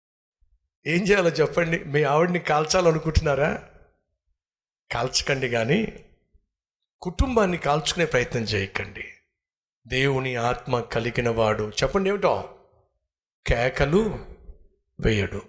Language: Telugu